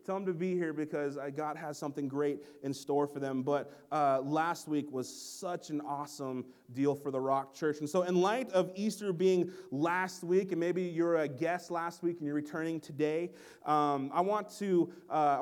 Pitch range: 145-175 Hz